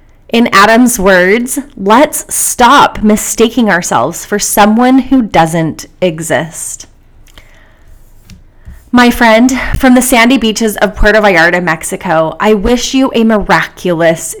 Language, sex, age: English, female, 30-49